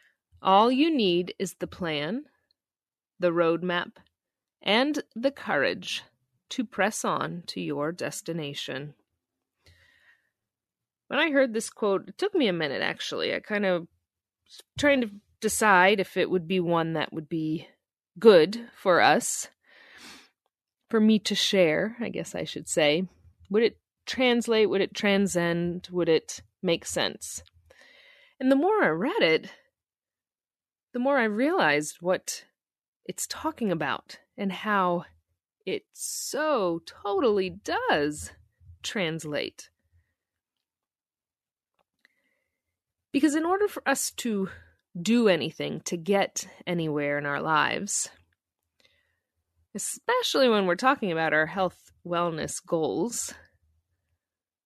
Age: 30-49